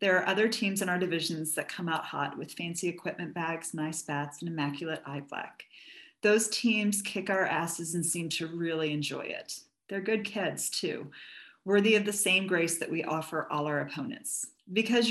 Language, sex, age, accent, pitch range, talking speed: English, female, 40-59, American, 160-200 Hz, 190 wpm